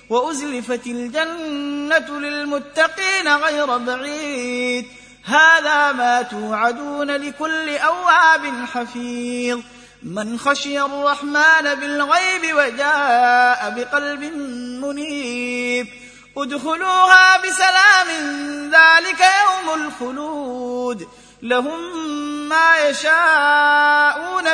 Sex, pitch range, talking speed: male, 245-305 Hz, 65 wpm